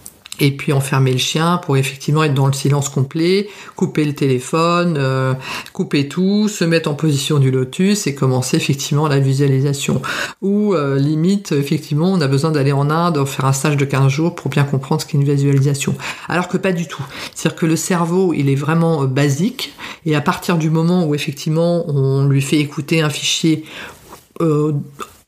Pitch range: 135-175 Hz